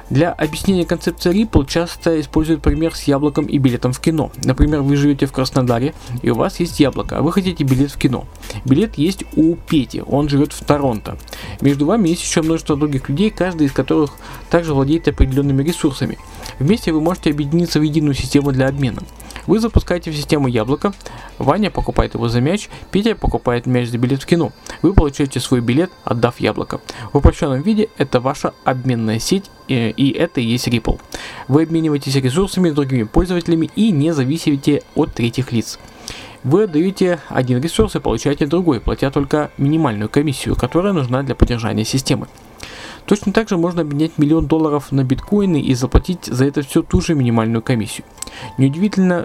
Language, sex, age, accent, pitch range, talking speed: Russian, male, 20-39, native, 130-160 Hz, 175 wpm